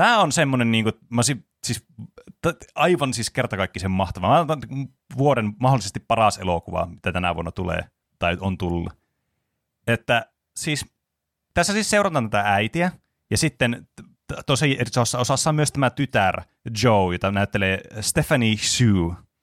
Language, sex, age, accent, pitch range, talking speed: Finnish, male, 30-49, native, 95-120 Hz, 135 wpm